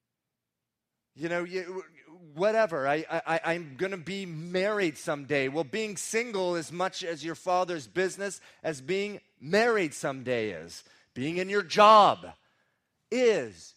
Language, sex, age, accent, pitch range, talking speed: English, male, 30-49, American, 115-185 Hz, 125 wpm